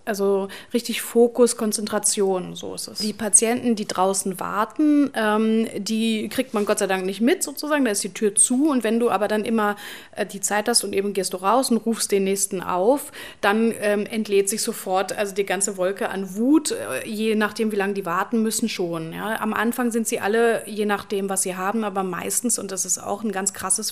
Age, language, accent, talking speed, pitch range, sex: 30-49, German, German, 205 wpm, 205-235 Hz, female